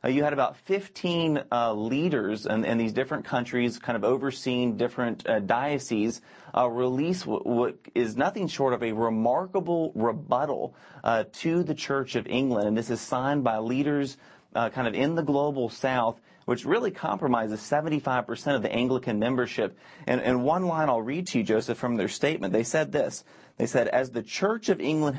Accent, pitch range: American, 120-155 Hz